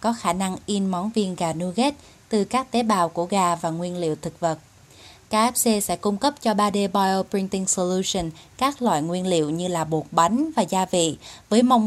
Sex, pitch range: female, 175-230 Hz